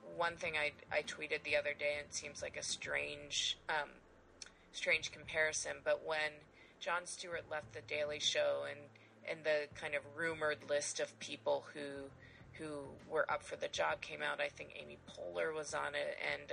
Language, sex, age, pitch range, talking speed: English, female, 30-49, 145-170 Hz, 185 wpm